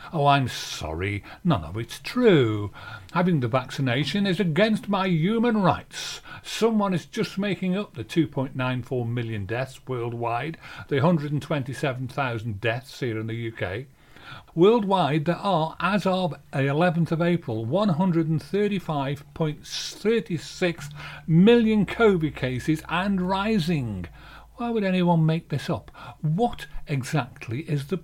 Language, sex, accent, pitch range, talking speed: English, male, British, 130-195 Hz, 120 wpm